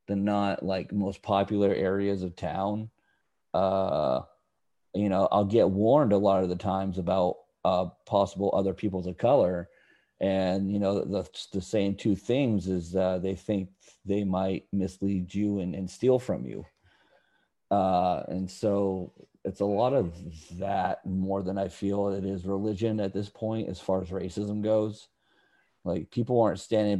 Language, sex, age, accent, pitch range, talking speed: English, male, 40-59, American, 95-100 Hz, 165 wpm